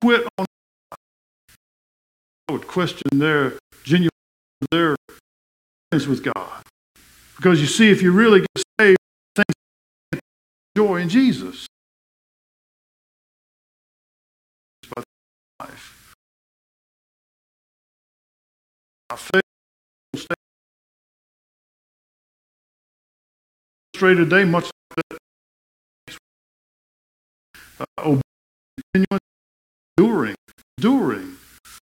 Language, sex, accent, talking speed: English, male, American, 65 wpm